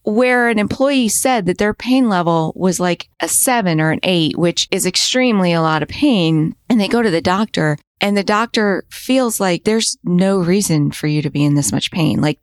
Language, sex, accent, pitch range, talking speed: English, female, American, 155-215 Hz, 215 wpm